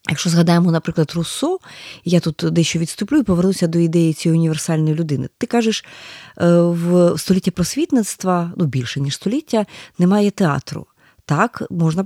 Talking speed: 140 wpm